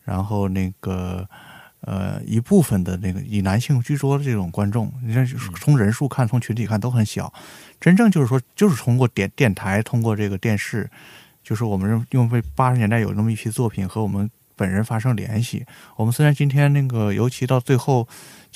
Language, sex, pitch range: Chinese, male, 100-135 Hz